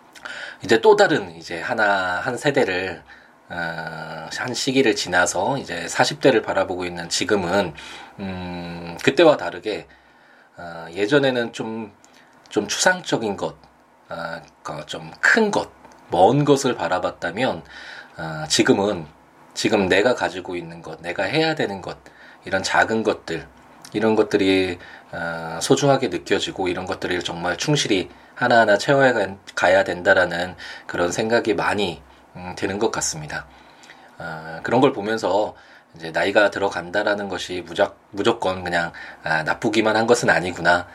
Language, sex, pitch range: Korean, male, 85-120 Hz